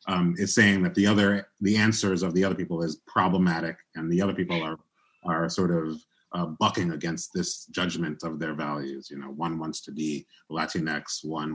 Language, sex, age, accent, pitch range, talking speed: English, male, 30-49, American, 85-105 Hz, 195 wpm